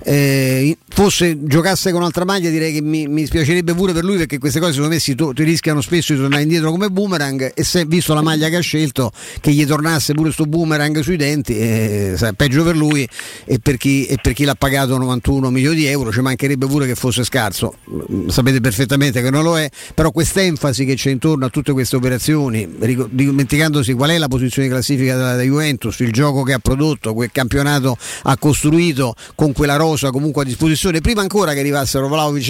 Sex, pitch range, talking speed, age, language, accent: male, 125-155 Hz, 205 wpm, 50-69, Italian, native